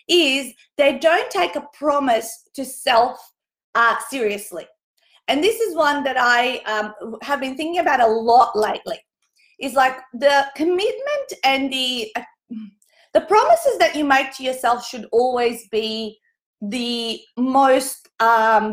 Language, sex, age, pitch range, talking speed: English, female, 30-49, 225-290 Hz, 140 wpm